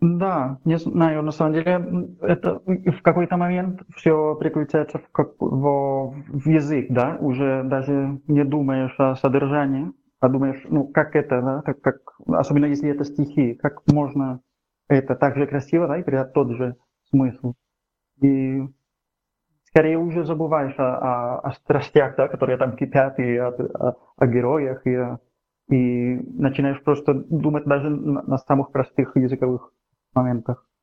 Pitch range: 130-150 Hz